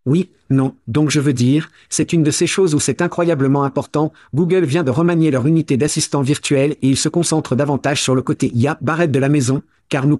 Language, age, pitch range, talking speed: French, 50-69, 135-165 Hz, 225 wpm